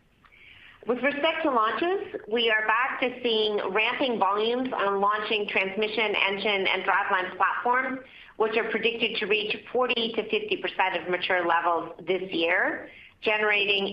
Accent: American